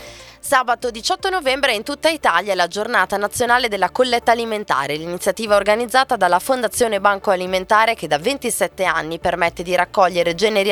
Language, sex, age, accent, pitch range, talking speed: Italian, female, 20-39, native, 185-240 Hz, 150 wpm